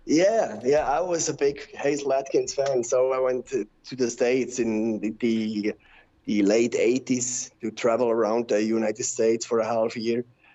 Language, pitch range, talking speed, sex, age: English, 115-145 Hz, 180 wpm, male, 30-49